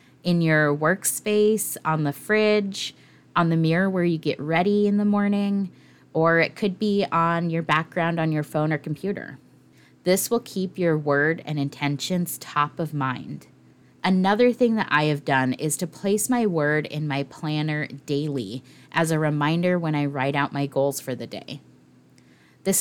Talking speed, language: 175 wpm, English